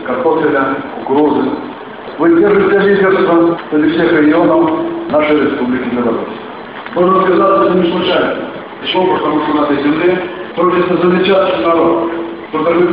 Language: Russian